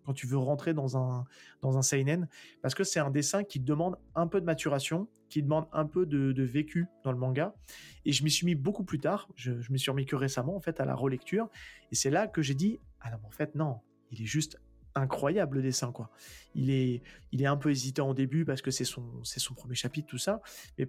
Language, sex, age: French, male, 30-49